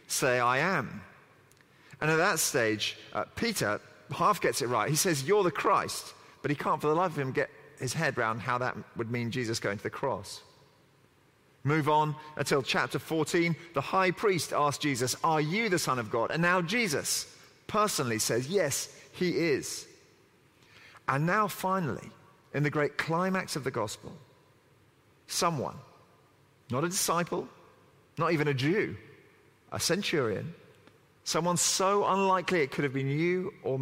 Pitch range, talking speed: 115-160 Hz, 165 wpm